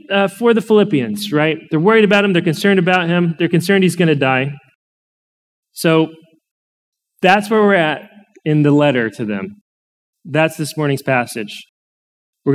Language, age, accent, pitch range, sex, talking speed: English, 30-49, American, 140-185 Hz, male, 165 wpm